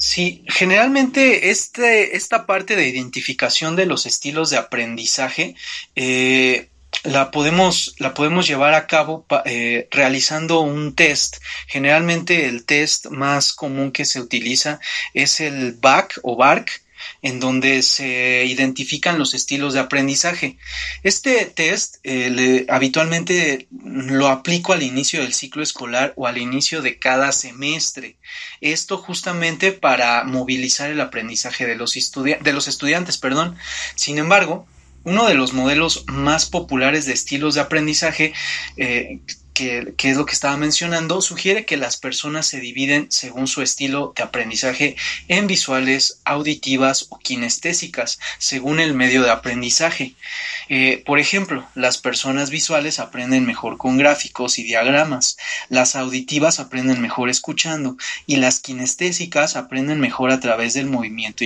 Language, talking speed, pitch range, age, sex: Spanish, 140 wpm, 130-160 Hz, 30-49, male